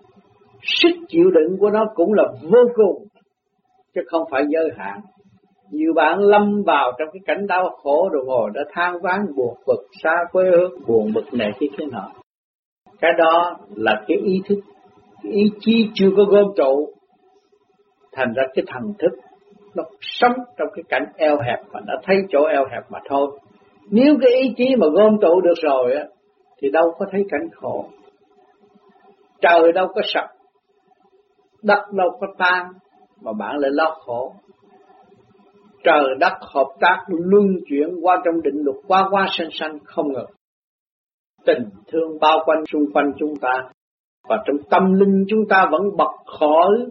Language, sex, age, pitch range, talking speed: Vietnamese, male, 60-79, 155-225 Hz, 170 wpm